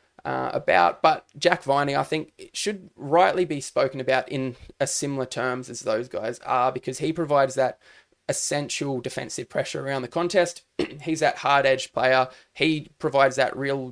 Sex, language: male, English